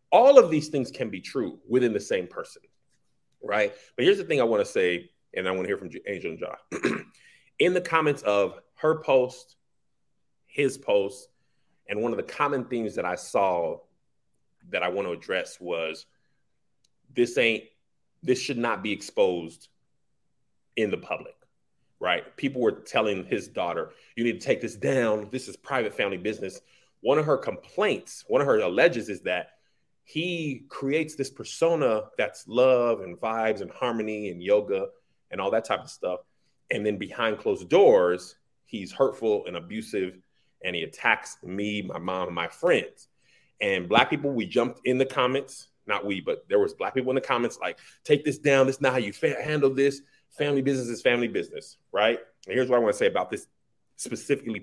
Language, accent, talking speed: English, American, 185 wpm